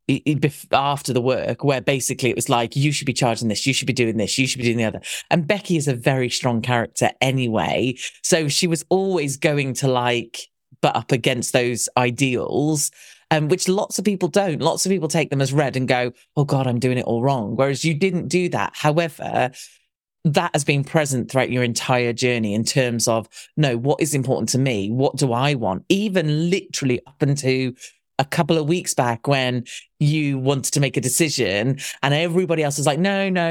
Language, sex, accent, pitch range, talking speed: English, male, British, 120-155 Hz, 215 wpm